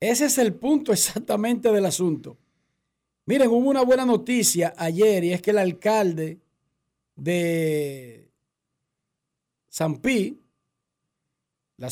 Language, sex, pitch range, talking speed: Spanish, male, 180-235 Hz, 105 wpm